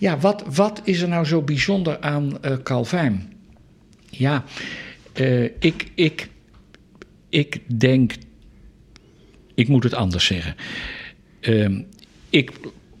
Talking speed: 110 wpm